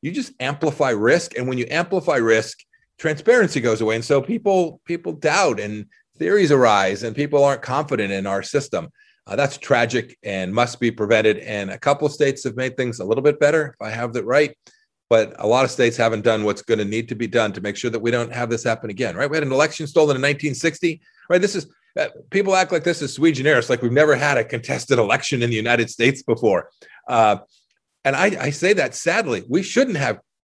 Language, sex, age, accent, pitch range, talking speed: English, male, 40-59, American, 115-150 Hz, 230 wpm